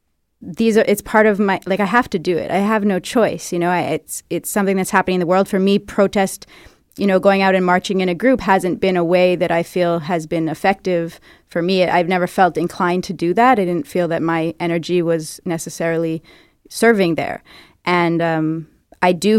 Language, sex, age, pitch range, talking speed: French, female, 30-49, 175-205 Hz, 225 wpm